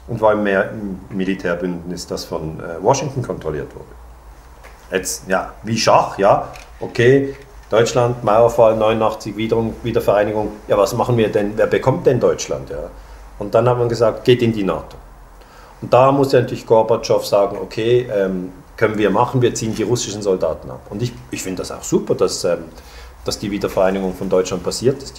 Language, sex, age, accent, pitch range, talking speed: German, male, 40-59, German, 90-125 Hz, 170 wpm